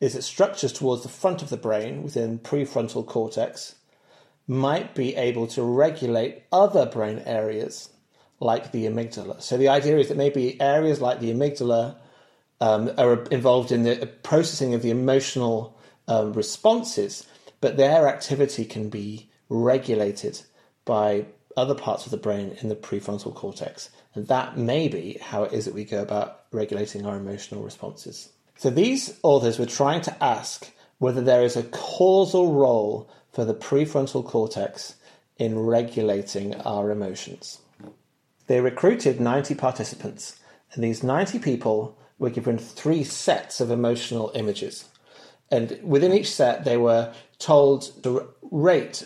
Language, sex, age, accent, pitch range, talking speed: English, male, 30-49, British, 110-140 Hz, 145 wpm